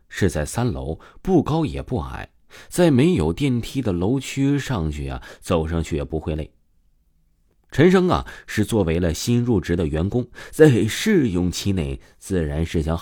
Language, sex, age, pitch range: Chinese, male, 30-49, 80-110 Hz